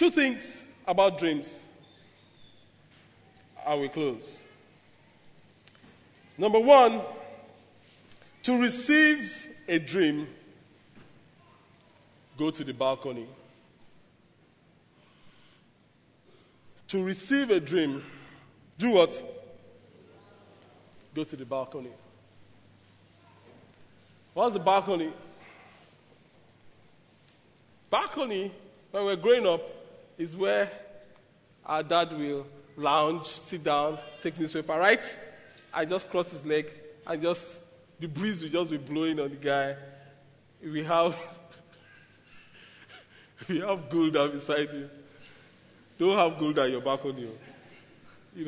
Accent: Nigerian